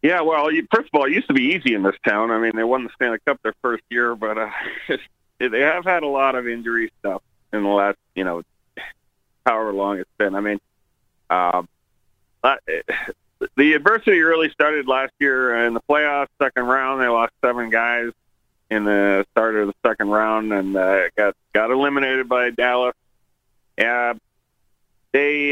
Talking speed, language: 185 wpm, English